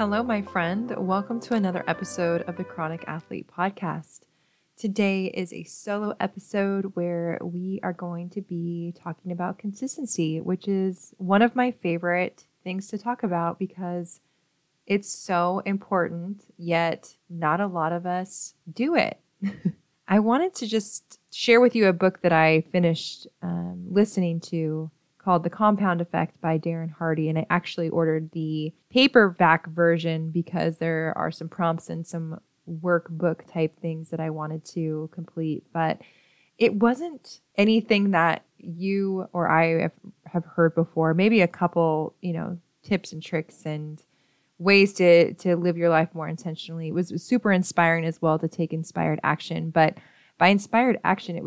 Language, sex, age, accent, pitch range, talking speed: English, female, 20-39, American, 165-195 Hz, 160 wpm